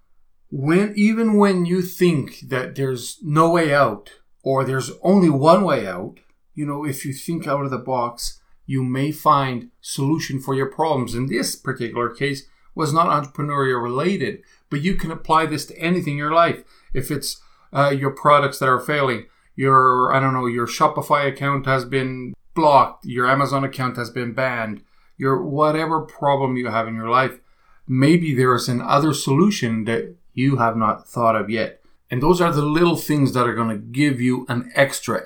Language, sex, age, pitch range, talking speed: English, male, 40-59, 120-145 Hz, 185 wpm